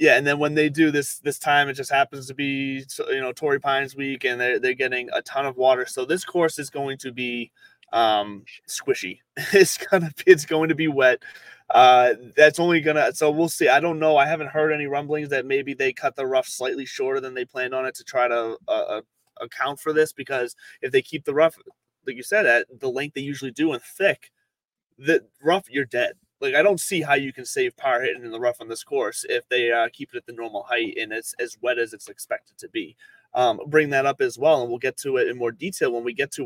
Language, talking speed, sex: English, 250 wpm, male